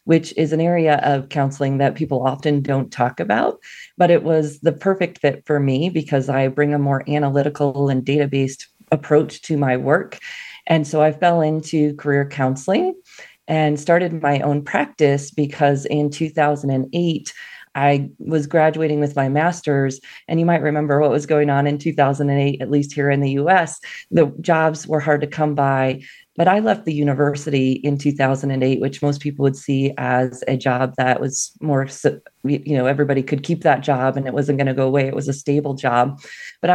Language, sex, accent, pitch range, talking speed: English, female, American, 135-155 Hz, 185 wpm